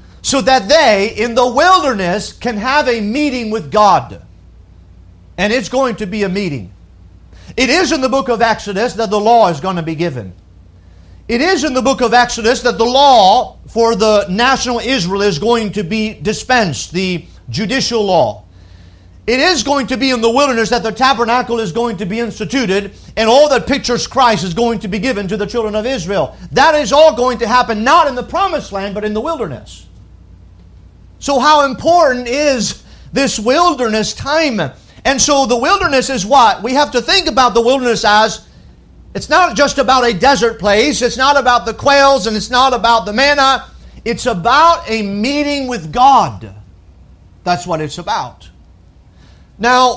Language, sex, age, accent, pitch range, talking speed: English, male, 40-59, American, 200-265 Hz, 185 wpm